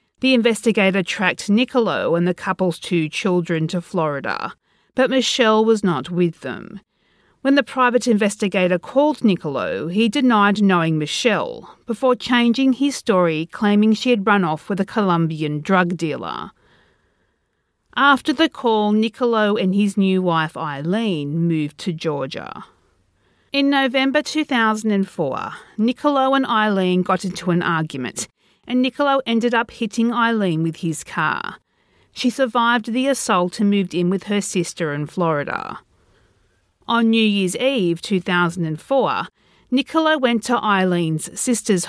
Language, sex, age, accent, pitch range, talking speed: English, female, 40-59, Australian, 170-240 Hz, 135 wpm